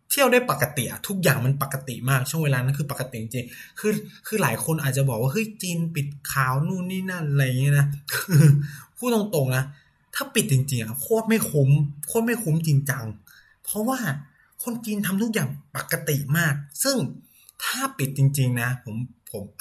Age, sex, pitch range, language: 20-39, male, 125-160 Hz, Thai